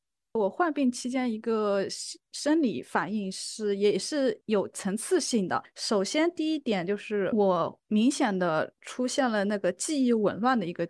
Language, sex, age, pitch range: Chinese, female, 20-39, 205-265 Hz